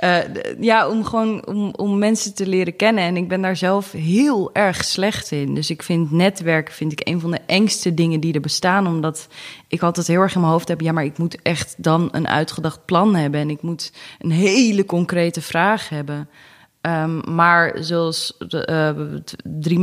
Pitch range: 150-175 Hz